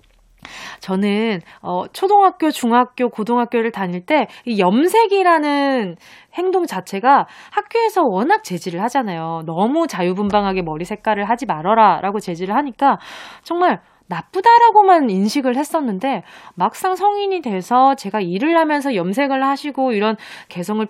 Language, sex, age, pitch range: Korean, female, 20-39, 195-290 Hz